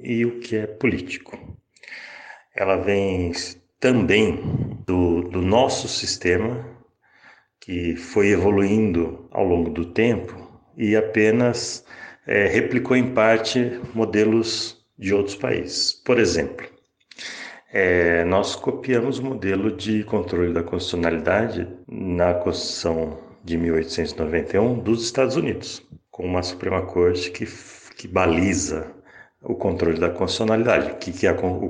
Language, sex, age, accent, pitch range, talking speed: Portuguese, male, 60-79, Brazilian, 90-115 Hz, 115 wpm